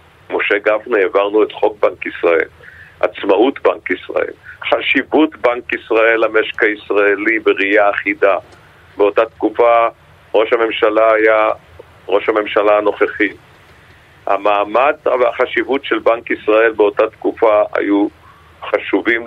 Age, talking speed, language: 50-69, 105 wpm, Hebrew